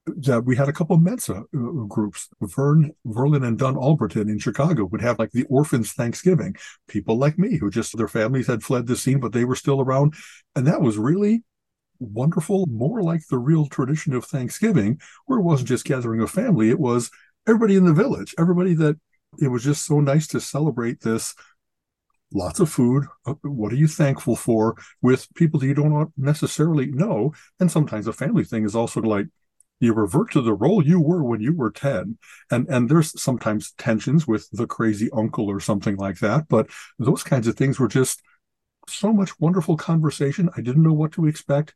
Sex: male